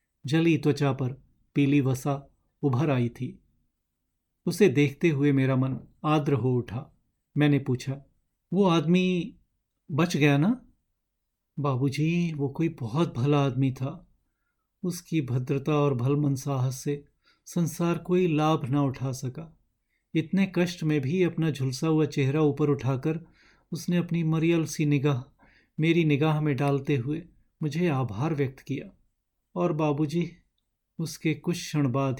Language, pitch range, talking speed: Hindi, 135-165 Hz, 135 wpm